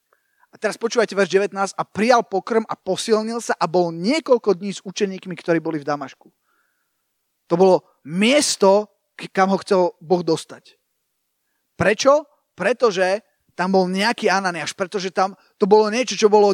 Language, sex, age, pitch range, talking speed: Slovak, male, 30-49, 195-265 Hz, 150 wpm